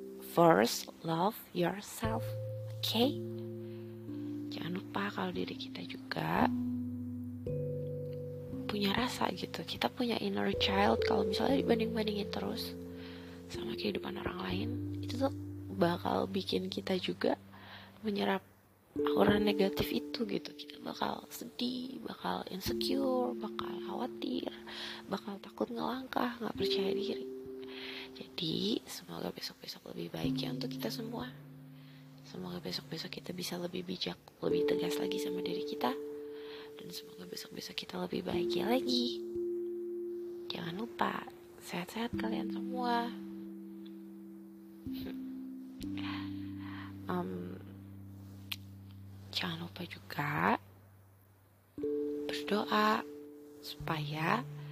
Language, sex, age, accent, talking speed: Indonesian, female, 20-39, native, 100 wpm